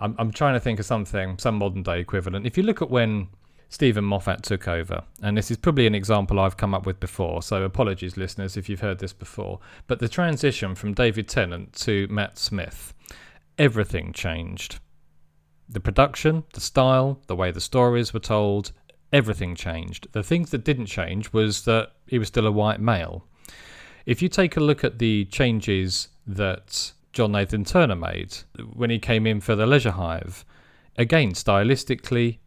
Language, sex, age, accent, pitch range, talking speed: English, male, 40-59, British, 95-125 Hz, 175 wpm